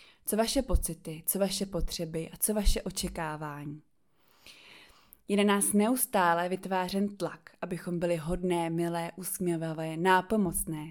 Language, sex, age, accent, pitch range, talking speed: Czech, female, 20-39, native, 170-205 Hz, 120 wpm